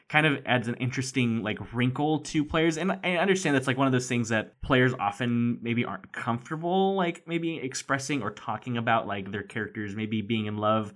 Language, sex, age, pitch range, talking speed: English, male, 20-39, 110-155 Hz, 205 wpm